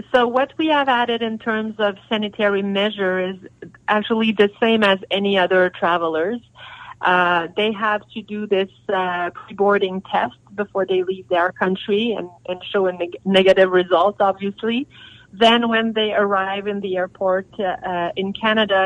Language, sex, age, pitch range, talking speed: English, female, 30-49, 180-220 Hz, 155 wpm